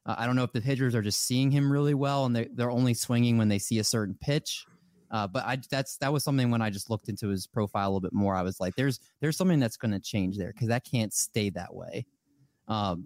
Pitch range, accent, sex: 110-135 Hz, American, male